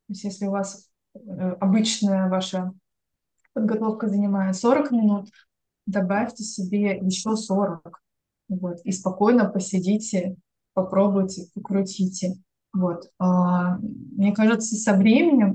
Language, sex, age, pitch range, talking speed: Russian, female, 20-39, 185-210 Hz, 100 wpm